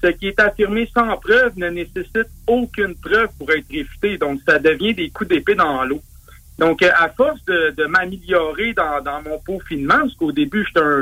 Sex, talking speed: male, 195 wpm